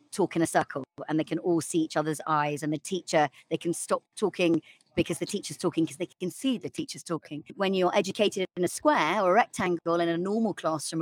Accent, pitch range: British, 170-200 Hz